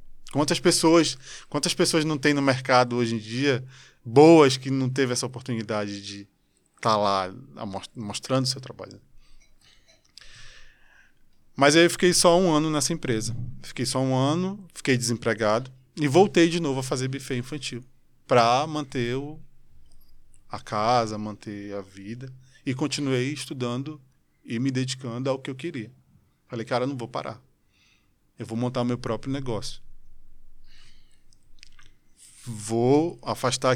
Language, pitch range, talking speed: Portuguese, 115-140 Hz, 140 wpm